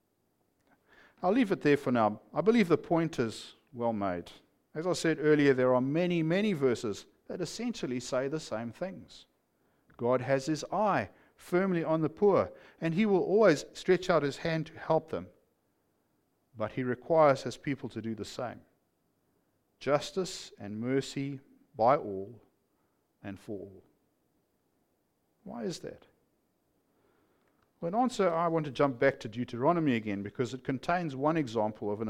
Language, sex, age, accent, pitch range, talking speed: English, male, 50-69, Australian, 115-170 Hz, 155 wpm